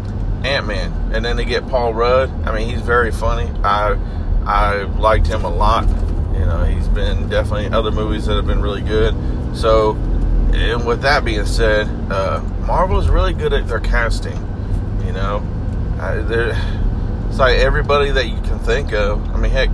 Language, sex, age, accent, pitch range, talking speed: English, male, 40-59, American, 85-110 Hz, 175 wpm